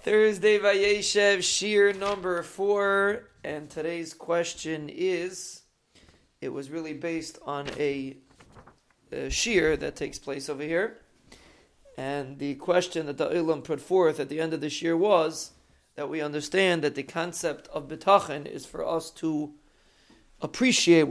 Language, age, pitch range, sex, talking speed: English, 40-59, 150-185 Hz, male, 140 wpm